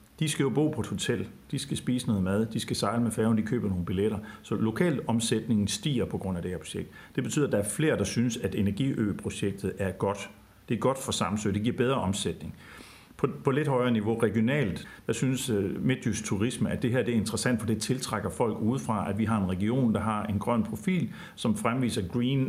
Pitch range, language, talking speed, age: 100-125 Hz, Danish, 230 wpm, 50-69